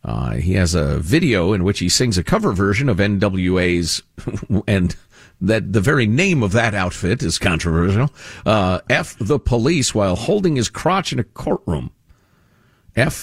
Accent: American